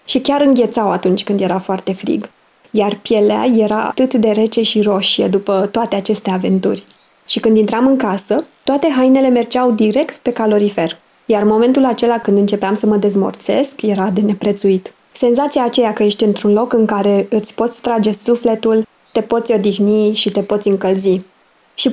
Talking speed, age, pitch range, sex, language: 170 wpm, 20-39, 205-240 Hz, female, Romanian